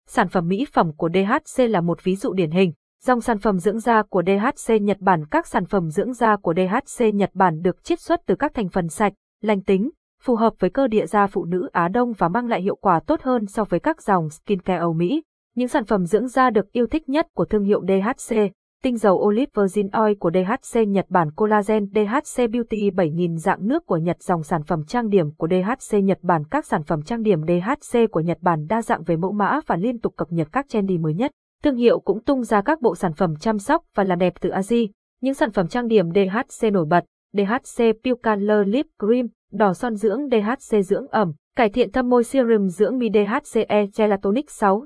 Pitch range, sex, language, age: 190-245 Hz, female, Vietnamese, 20-39